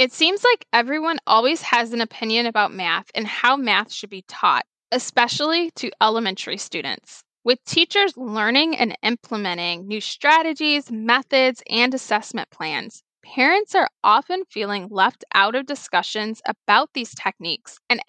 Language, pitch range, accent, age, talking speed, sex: English, 205-280 Hz, American, 10-29, 145 wpm, female